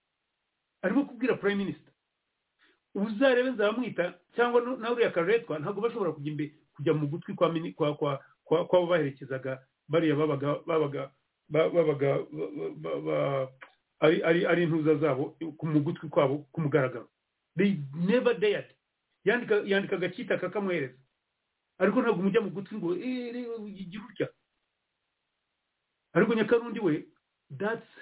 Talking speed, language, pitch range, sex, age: 100 wpm, English, 150-200 Hz, male, 40-59